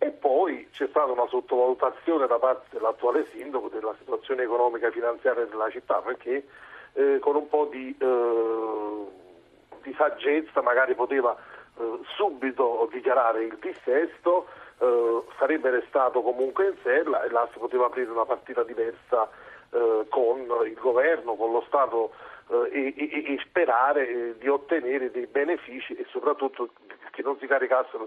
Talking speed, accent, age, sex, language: 145 wpm, native, 40-59, male, Italian